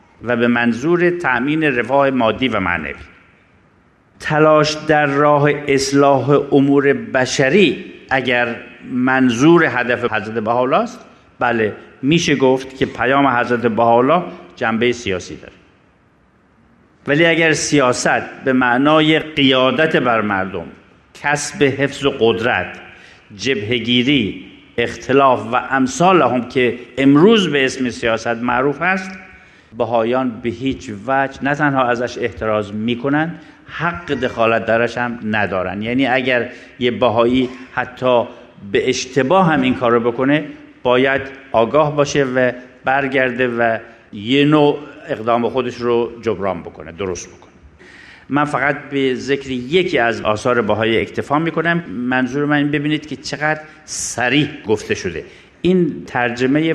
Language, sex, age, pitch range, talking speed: Persian, male, 50-69, 120-145 Hz, 120 wpm